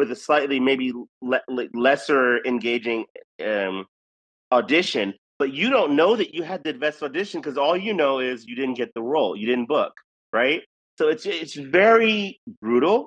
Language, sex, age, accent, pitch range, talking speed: English, male, 30-49, American, 120-170 Hz, 175 wpm